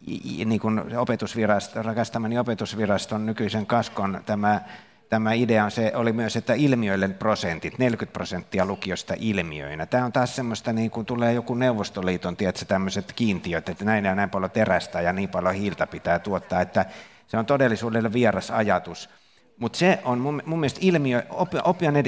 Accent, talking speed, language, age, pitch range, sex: native, 155 wpm, Finnish, 50-69, 100-130 Hz, male